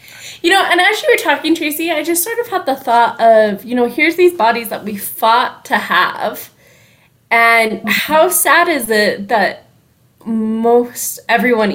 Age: 20-39